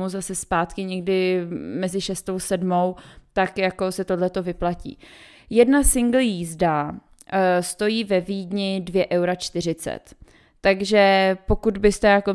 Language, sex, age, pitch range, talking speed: Czech, female, 20-39, 180-200 Hz, 115 wpm